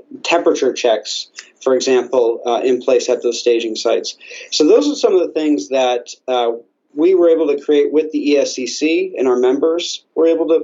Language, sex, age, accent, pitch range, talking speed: English, male, 50-69, American, 125-160 Hz, 190 wpm